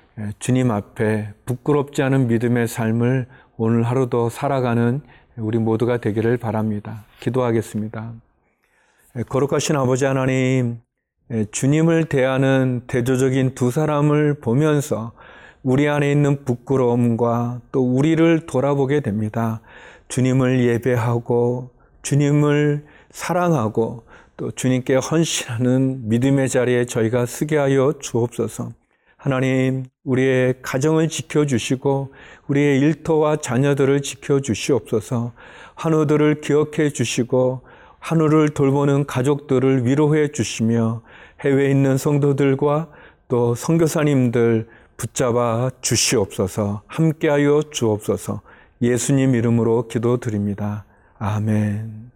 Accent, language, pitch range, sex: native, Korean, 115-140 Hz, male